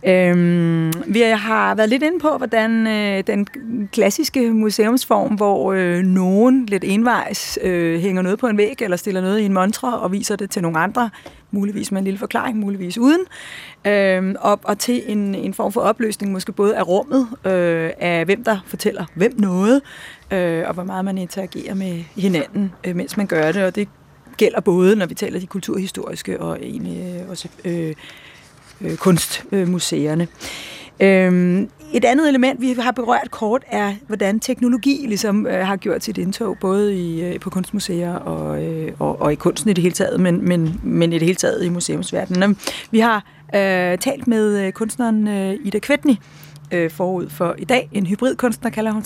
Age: 30-49